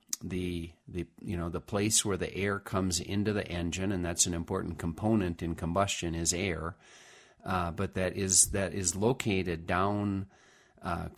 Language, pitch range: English, 85-100 Hz